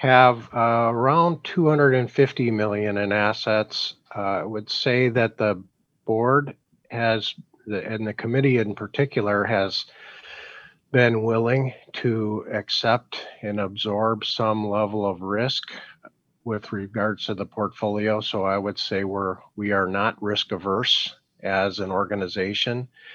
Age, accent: 50-69, American